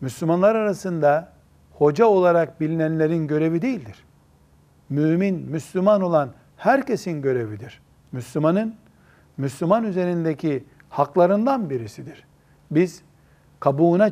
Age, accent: 60-79, native